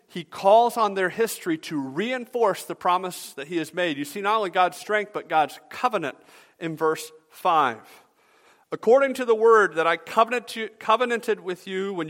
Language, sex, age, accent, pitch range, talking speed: English, male, 40-59, American, 160-220 Hz, 175 wpm